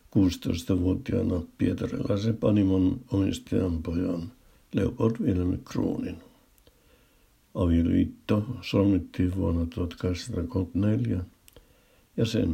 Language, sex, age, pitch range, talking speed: Finnish, male, 60-79, 90-100 Hz, 65 wpm